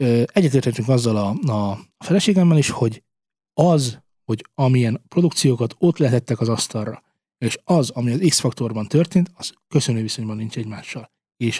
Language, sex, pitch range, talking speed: Hungarian, male, 120-155 Hz, 140 wpm